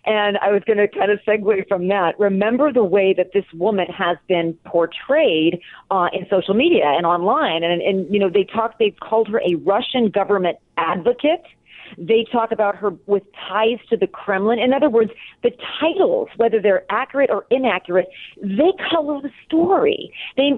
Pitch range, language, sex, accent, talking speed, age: 190-260 Hz, English, female, American, 180 wpm, 40-59